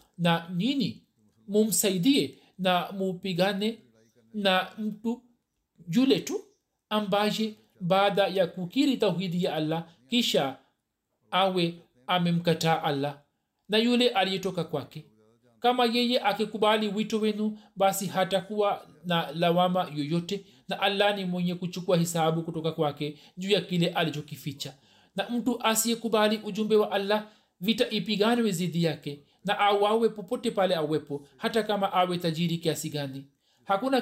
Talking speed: 120 wpm